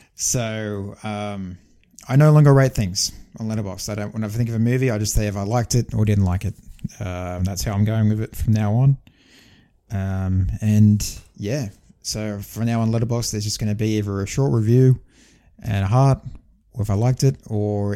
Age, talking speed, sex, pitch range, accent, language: 20-39, 215 wpm, male, 95-115 Hz, Australian, English